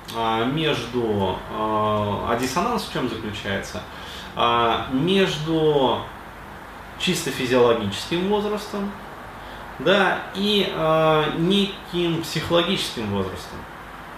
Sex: male